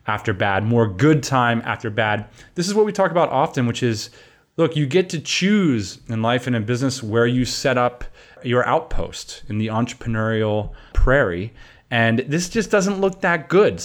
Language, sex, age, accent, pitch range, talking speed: English, male, 30-49, American, 110-140 Hz, 185 wpm